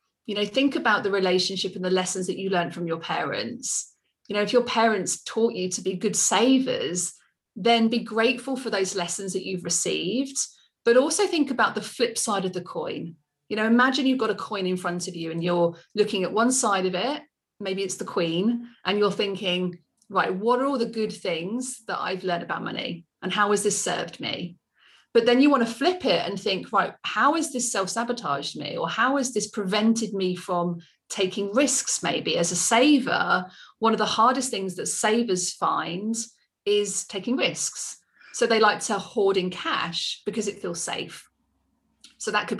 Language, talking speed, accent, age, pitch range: English, 200 wpm, British, 30-49, 185-240 Hz